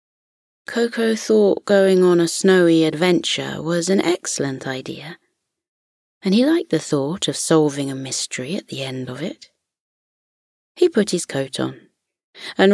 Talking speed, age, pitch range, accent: 145 wpm, 30-49, 150-205 Hz, British